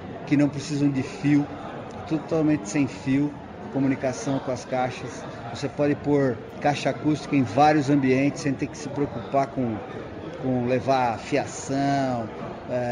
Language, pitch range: Portuguese, 130-155 Hz